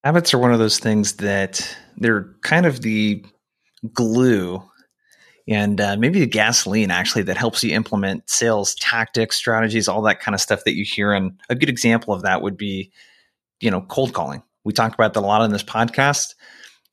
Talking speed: 190 wpm